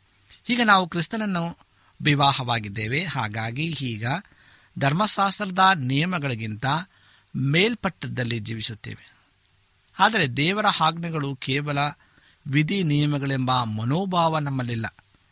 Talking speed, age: 70 wpm, 50-69